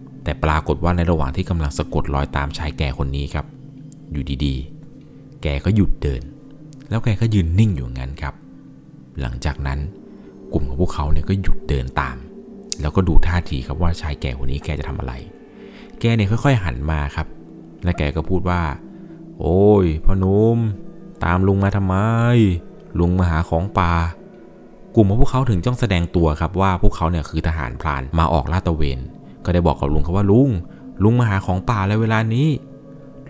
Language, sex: Thai, male